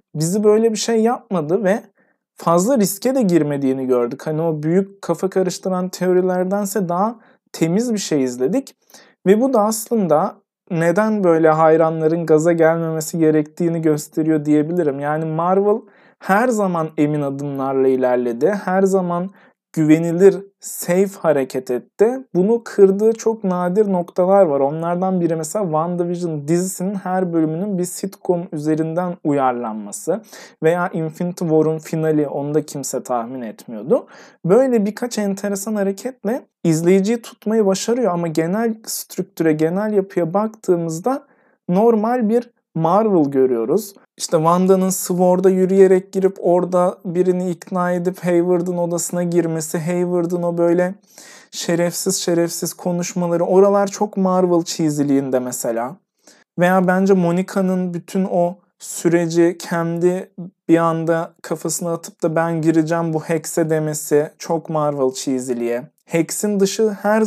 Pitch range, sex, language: 160-200 Hz, male, Turkish